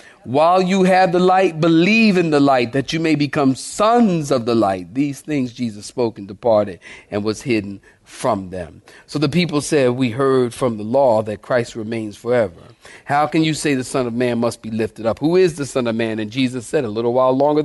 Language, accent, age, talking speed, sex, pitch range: English, American, 40-59, 225 wpm, male, 125-165 Hz